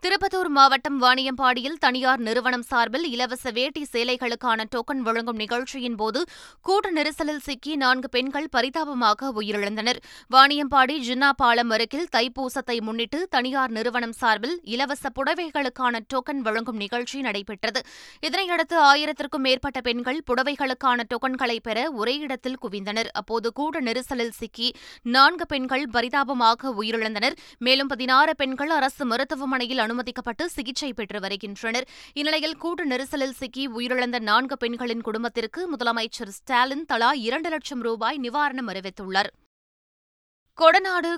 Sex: female